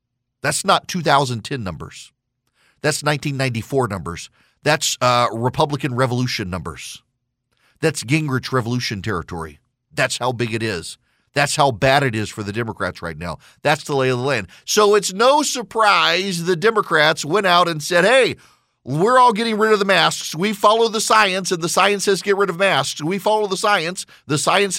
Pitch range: 120-200 Hz